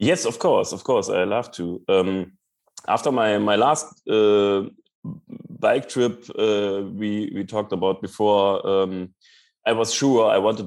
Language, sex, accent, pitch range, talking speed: English, male, German, 95-120 Hz, 155 wpm